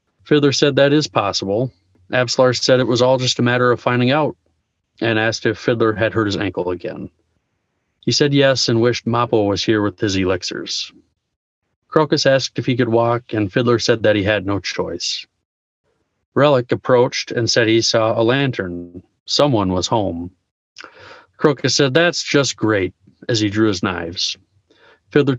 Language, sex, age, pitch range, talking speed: English, male, 40-59, 100-130 Hz, 170 wpm